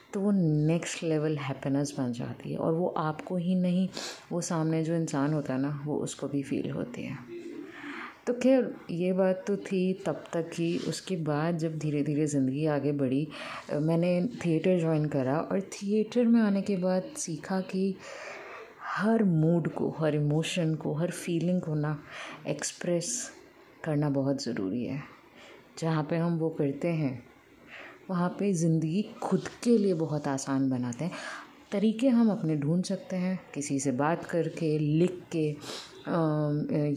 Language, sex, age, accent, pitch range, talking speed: English, female, 30-49, Indian, 150-185 Hz, 160 wpm